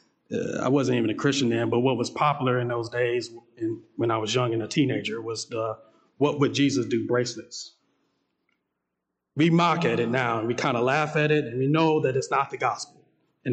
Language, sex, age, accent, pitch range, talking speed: English, male, 40-59, American, 140-230 Hz, 215 wpm